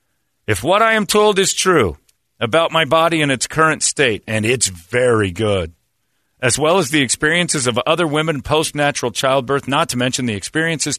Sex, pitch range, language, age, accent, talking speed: male, 115-160 Hz, English, 40-59, American, 180 wpm